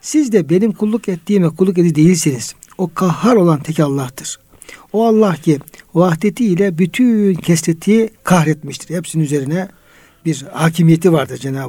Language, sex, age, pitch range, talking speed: Turkish, male, 60-79, 155-200 Hz, 135 wpm